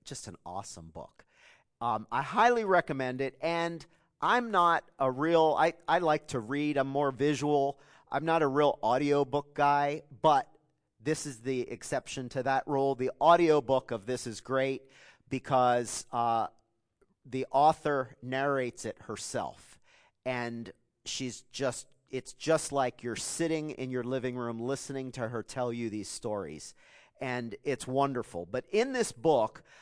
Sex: male